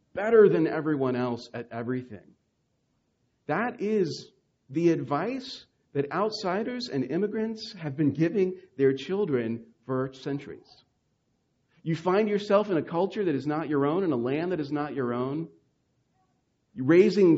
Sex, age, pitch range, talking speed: male, 40-59, 135-200 Hz, 140 wpm